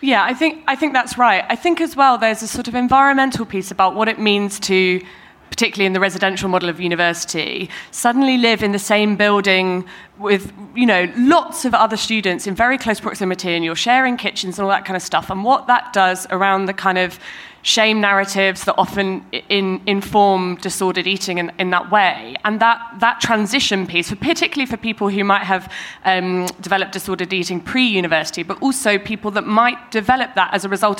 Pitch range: 180-215 Hz